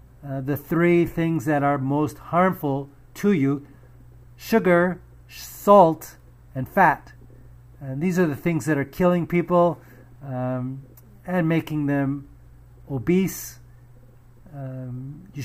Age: 50-69